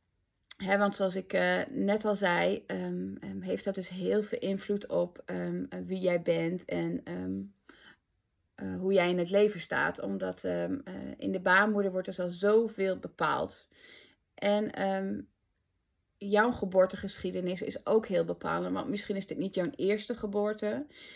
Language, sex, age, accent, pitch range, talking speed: Dutch, female, 20-39, Dutch, 170-200 Hz, 165 wpm